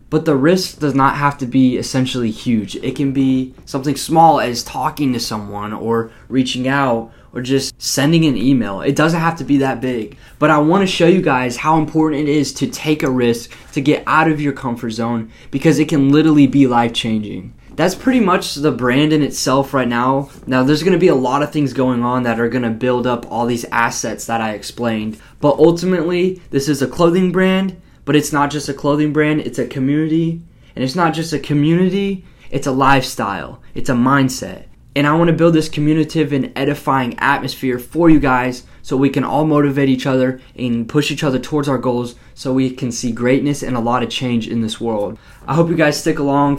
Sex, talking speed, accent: male, 215 wpm, American